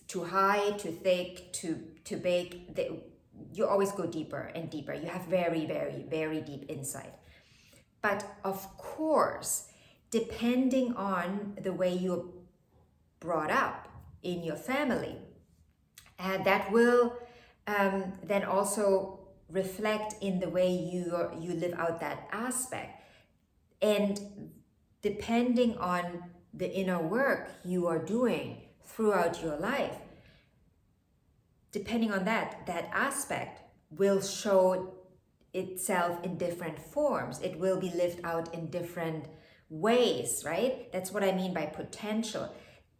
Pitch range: 175-220 Hz